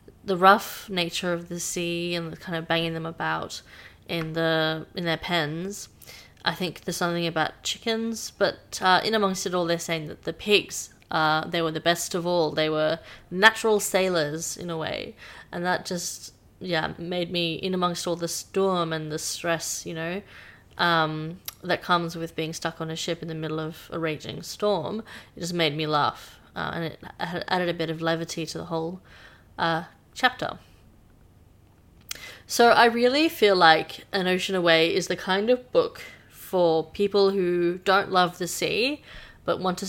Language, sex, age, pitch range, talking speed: English, female, 20-39, 165-185 Hz, 185 wpm